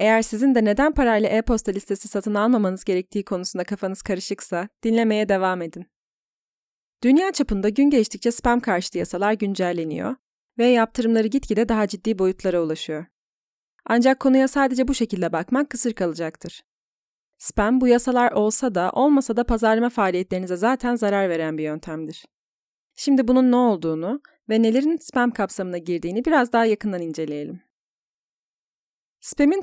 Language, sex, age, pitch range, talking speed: Turkish, female, 30-49, 185-240 Hz, 135 wpm